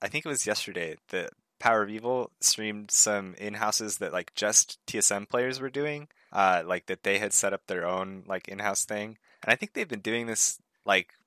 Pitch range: 85-100 Hz